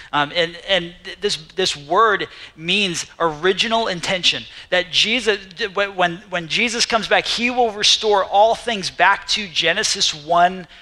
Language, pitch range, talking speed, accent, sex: English, 165-210 Hz, 140 wpm, American, male